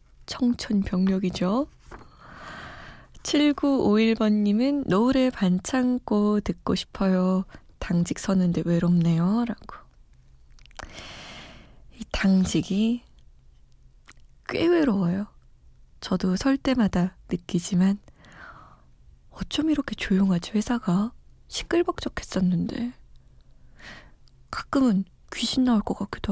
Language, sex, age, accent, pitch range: Korean, female, 20-39, native, 185-245 Hz